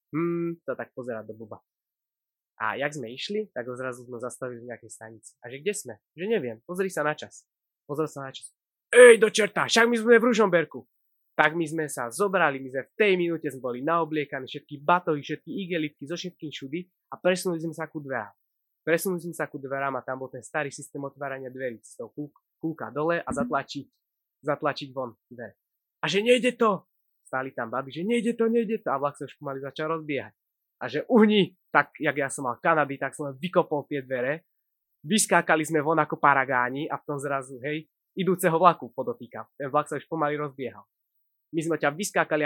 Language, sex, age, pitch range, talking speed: Slovak, male, 20-39, 130-165 Hz, 205 wpm